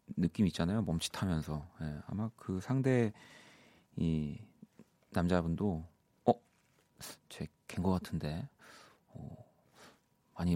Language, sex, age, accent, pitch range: Korean, male, 30-49, native, 90-130 Hz